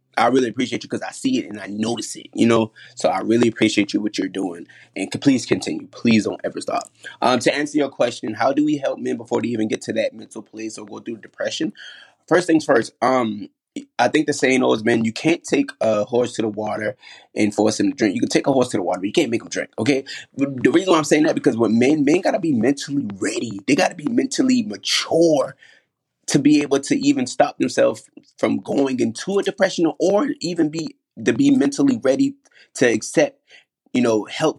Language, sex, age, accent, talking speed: English, male, 30-49, American, 230 wpm